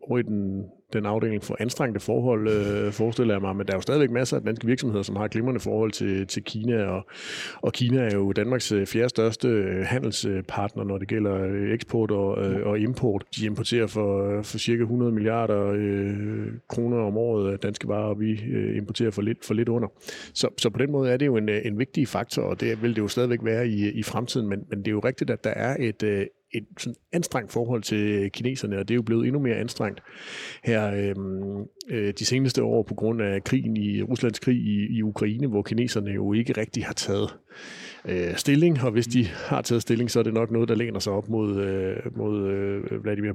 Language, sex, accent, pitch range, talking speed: Danish, male, native, 105-120 Hz, 210 wpm